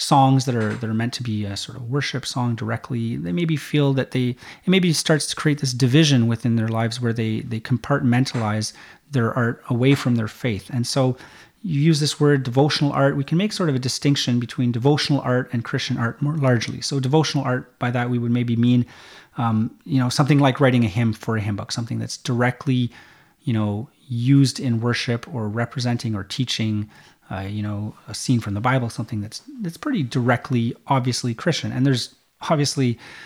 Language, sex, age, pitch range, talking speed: English, male, 30-49, 115-140 Hz, 205 wpm